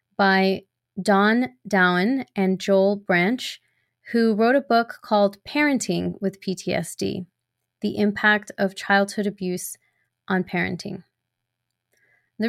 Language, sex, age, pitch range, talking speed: English, female, 20-39, 180-210 Hz, 105 wpm